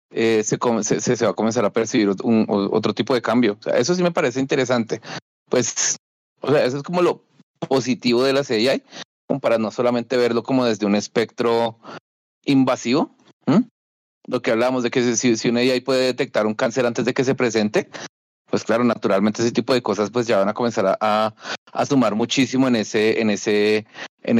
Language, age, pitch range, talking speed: Spanish, 30-49, 110-125 Hz, 205 wpm